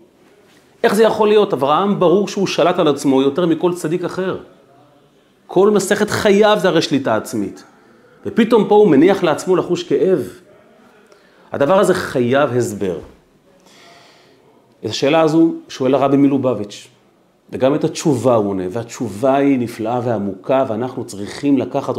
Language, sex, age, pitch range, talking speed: Hebrew, male, 40-59, 110-160 Hz, 135 wpm